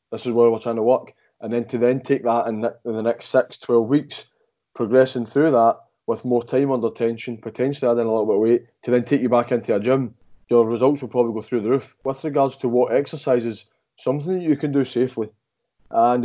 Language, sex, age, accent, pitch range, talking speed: English, male, 20-39, British, 115-125 Hz, 235 wpm